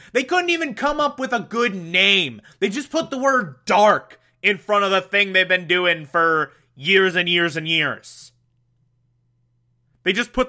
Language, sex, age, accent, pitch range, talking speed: English, male, 30-49, American, 125-200 Hz, 185 wpm